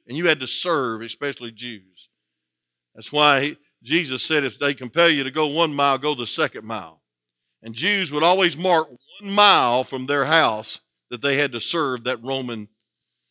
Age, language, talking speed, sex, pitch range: 50-69, English, 180 wpm, male, 105-175 Hz